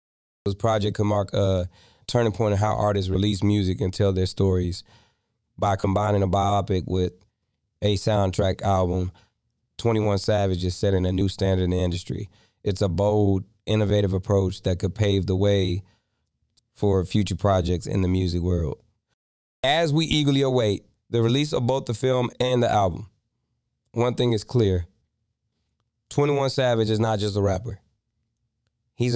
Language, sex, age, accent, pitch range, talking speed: English, male, 20-39, American, 95-110 Hz, 155 wpm